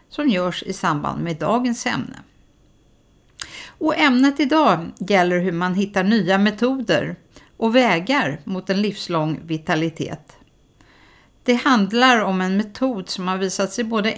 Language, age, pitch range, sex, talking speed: Swedish, 50-69, 180-250 Hz, female, 135 wpm